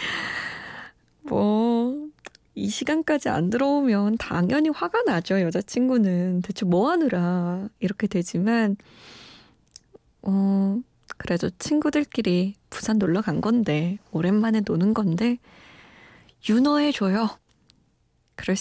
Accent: native